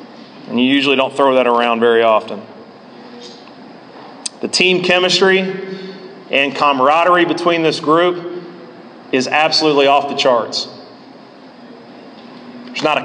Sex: male